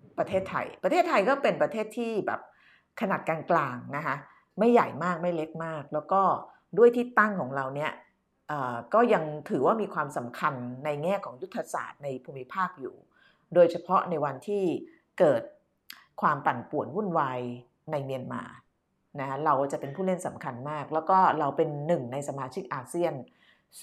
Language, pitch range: Thai, 145-205 Hz